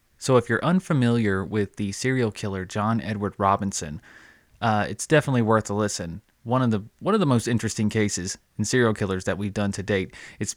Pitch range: 105-130 Hz